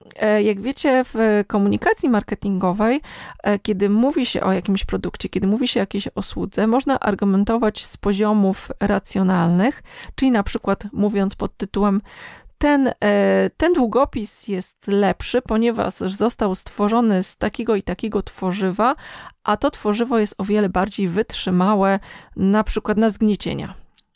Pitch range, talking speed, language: 195-235 Hz, 130 wpm, Polish